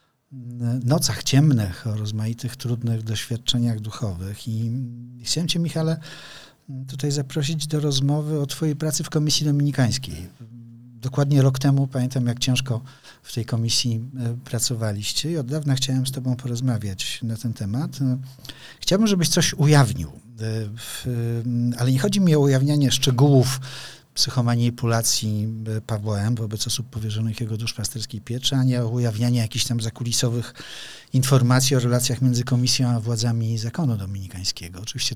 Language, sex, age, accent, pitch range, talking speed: Polish, male, 50-69, native, 115-140 Hz, 130 wpm